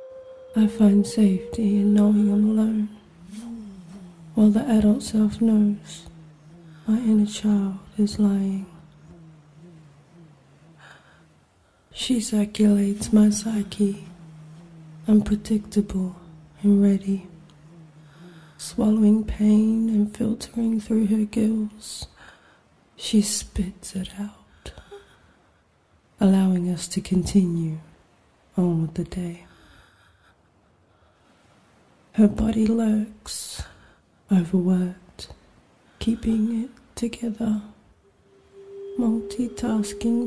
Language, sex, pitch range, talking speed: English, female, 185-225 Hz, 75 wpm